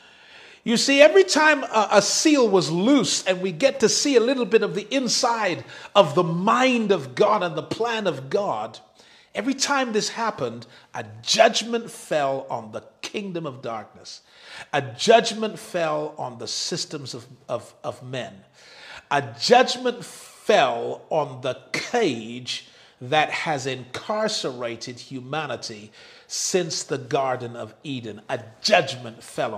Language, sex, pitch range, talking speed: English, male, 135-225 Hz, 140 wpm